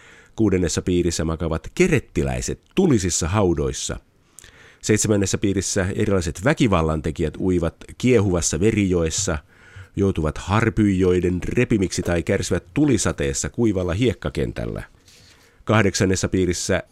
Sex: male